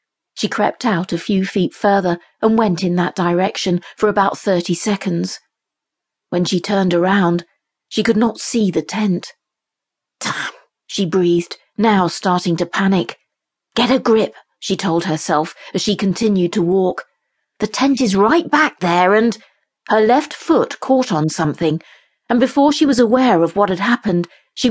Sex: female